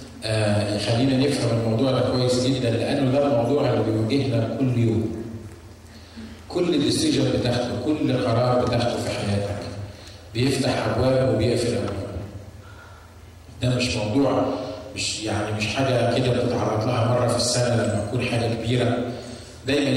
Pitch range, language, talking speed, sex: 115-130 Hz, Arabic, 130 wpm, male